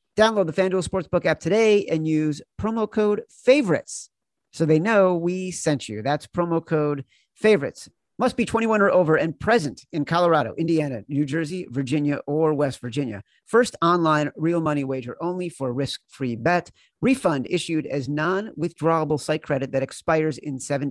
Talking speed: 160 wpm